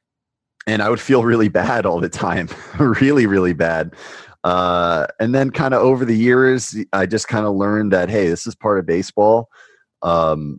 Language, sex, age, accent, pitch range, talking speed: English, male, 30-49, American, 85-110 Hz, 185 wpm